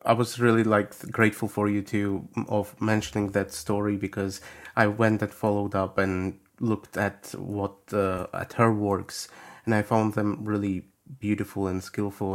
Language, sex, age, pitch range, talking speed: English, male, 30-49, 95-110 Hz, 165 wpm